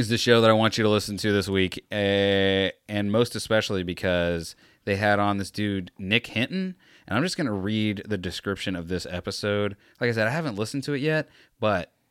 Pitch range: 100-130 Hz